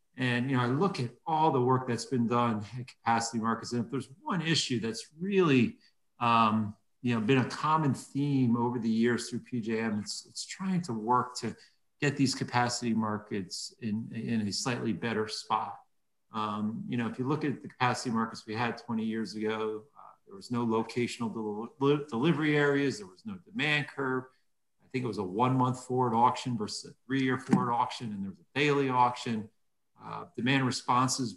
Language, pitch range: English, 115-135 Hz